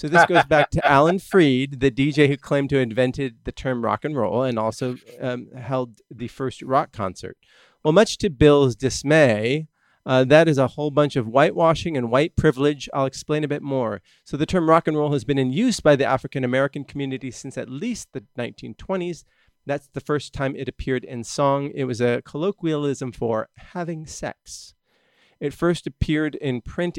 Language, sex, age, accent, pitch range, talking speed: English, male, 40-59, American, 125-150 Hz, 195 wpm